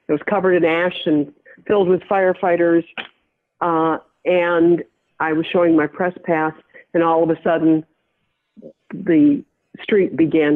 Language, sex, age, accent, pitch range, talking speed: English, female, 60-79, American, 160-210 Hz, 140 wpm